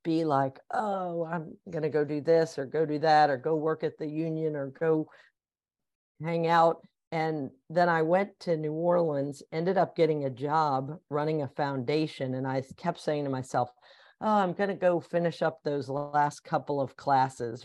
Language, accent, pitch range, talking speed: English, American, 140-170 Hz, 185 wpm